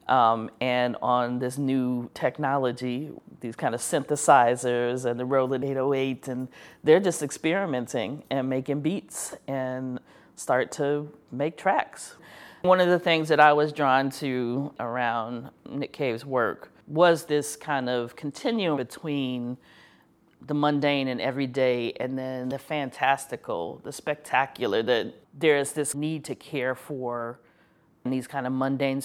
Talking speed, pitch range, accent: 140 wpm, 130-150 Hz, American